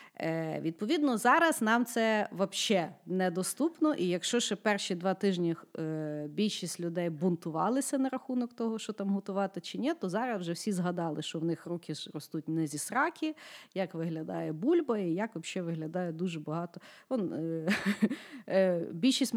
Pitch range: 170-225 Hz